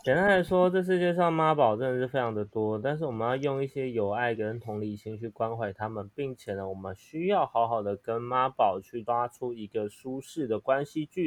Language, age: Chinese, 20-39